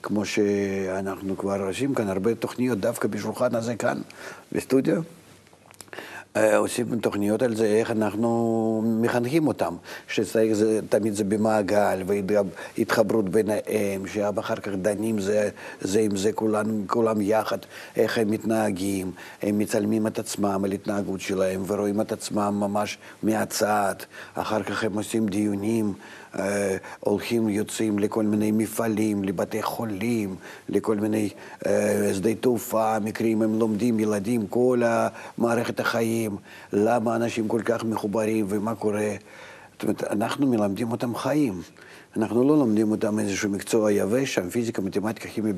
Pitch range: 100-115 Hz